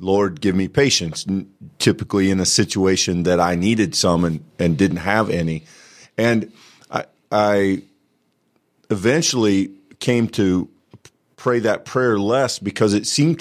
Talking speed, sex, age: 135 wpm, male, 40-59